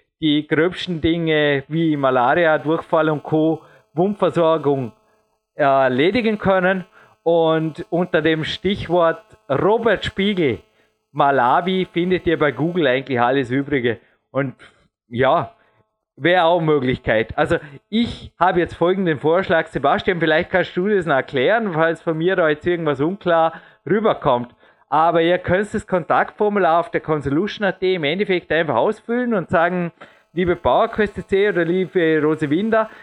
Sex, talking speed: male, 130 wpm